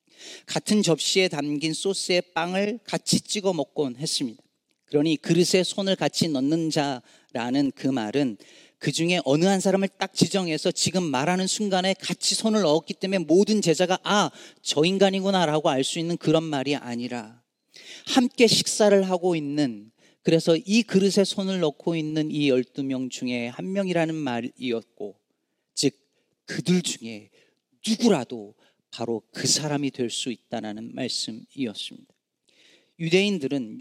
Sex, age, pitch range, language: male, 40-59, 145-195 Hz, Korean